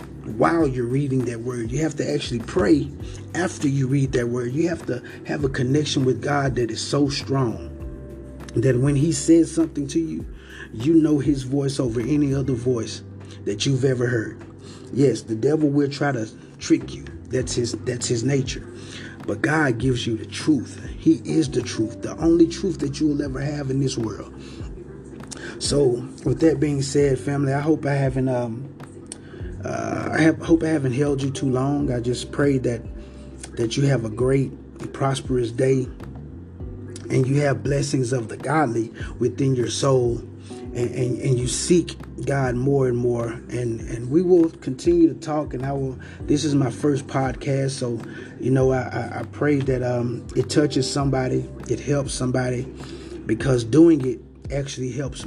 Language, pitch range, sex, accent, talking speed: English, 120-140 Hz, male, American, 180 wpm